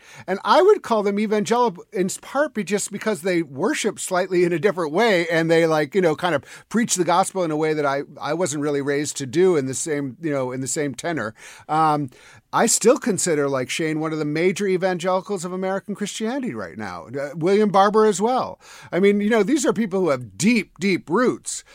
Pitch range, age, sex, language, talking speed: 150-210 Hz, 50-69, male, English, 220 wpm